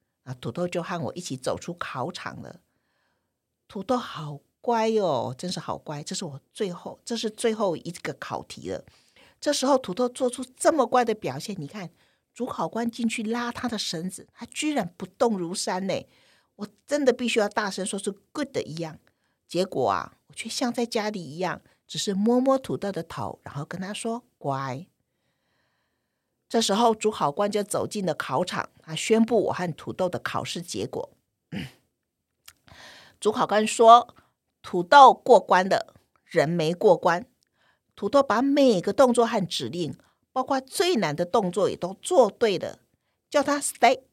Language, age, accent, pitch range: Chinese, 50-69, American, 170-240 Hz